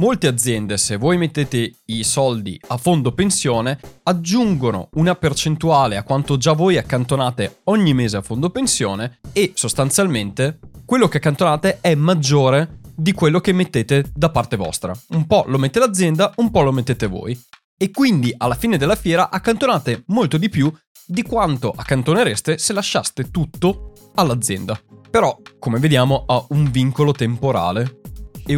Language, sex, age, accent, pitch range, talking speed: Italian, male, 20-39, native, 120-170 Hz, 150 wpm